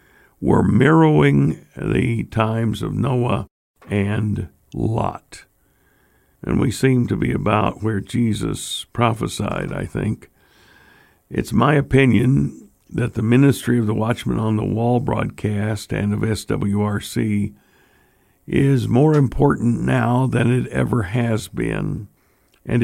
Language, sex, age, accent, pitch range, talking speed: English, male, 60-79, American, 105-130 Hz, 120 wpm